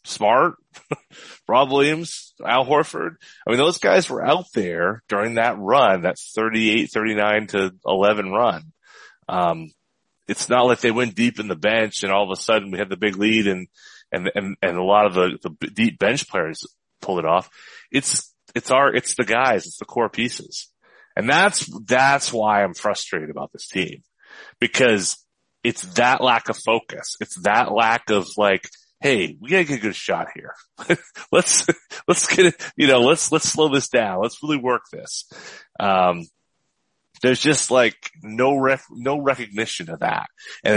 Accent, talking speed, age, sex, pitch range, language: American, 175 wpm, 30-49, male, 100-130 Hz, English